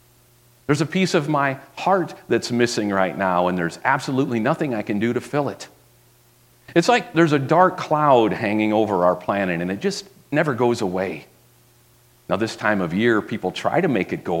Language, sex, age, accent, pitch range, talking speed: English, male, 40-59, American, 115-155 Hz, 195 wpm